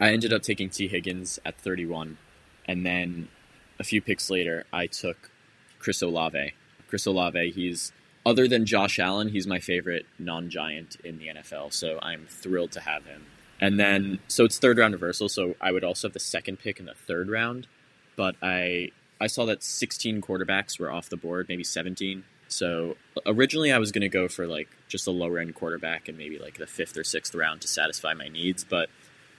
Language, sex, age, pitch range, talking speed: English, male, 20-39, 90-105 Hz, 200 wpm